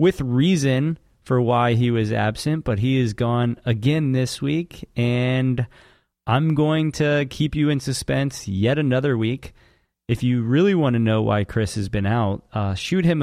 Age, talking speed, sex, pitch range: 30-49, 175 wpm, male, 105-140 Hz